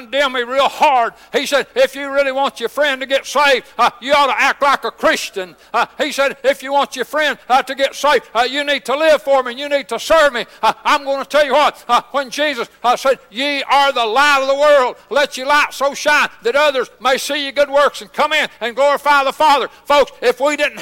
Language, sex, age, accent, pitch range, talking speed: English, male, 60-79, American, 265-295 Hz, 255 wpm